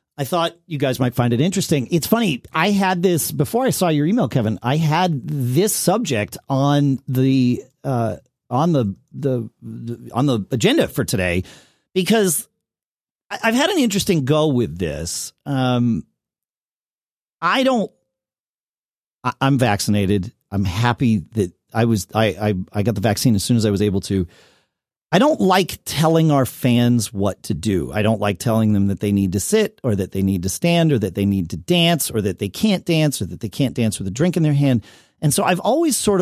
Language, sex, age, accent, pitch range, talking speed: English, male, 40-59, American, 105-155 Hz, 200 wpm